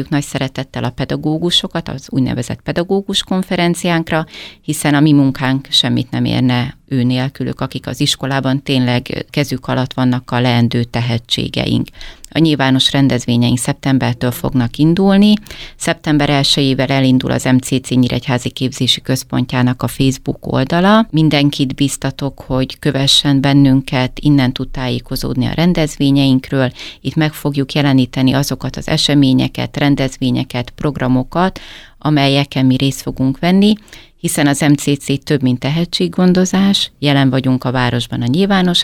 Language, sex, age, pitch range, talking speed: Hungarian, female, 30-49, 125-145 Hz, 125 wpm